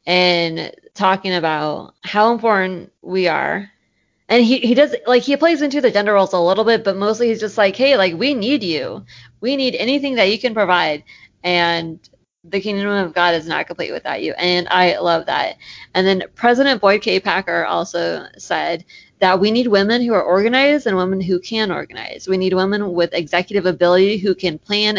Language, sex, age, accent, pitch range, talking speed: English, female, 20-39, American, 180-230 Hz, 195 wpm